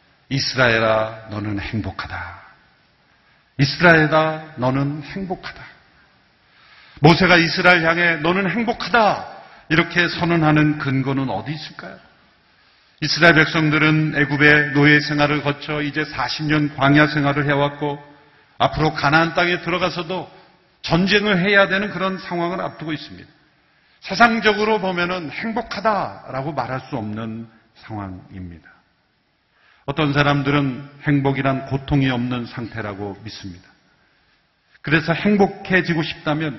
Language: Korean